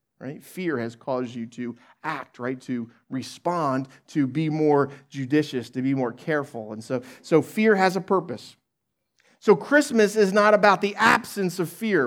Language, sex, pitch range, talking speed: English, male, 140-195 Hz, 170 wpm